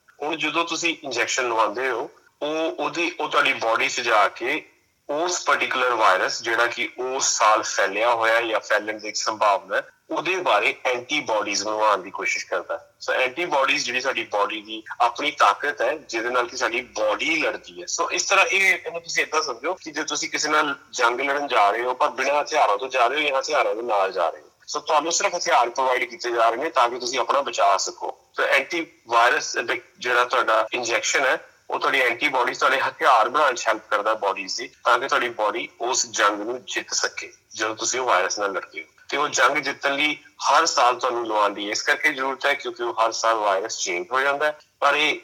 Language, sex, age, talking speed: Punjabi, male, 30-49, 205 wpm